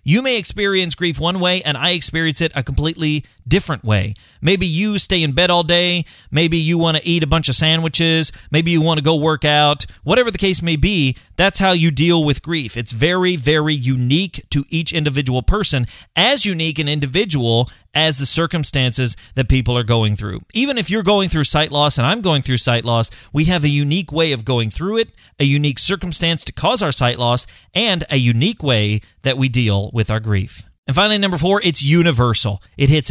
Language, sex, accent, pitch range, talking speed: English, male, American, 125-170 Hz, 210 wpm